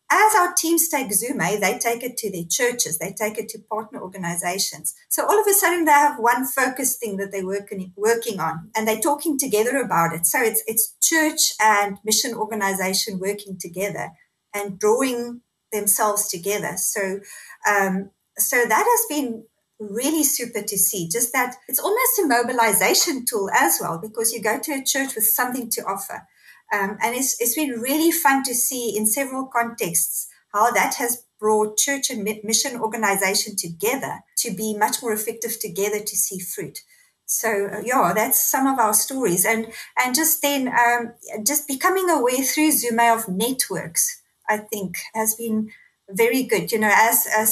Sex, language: female, English